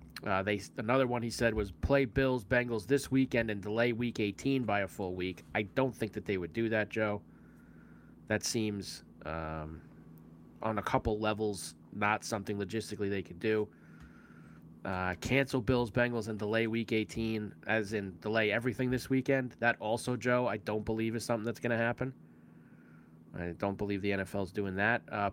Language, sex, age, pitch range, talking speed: English, male, 20-39, 90-125 Hz, 180 wpm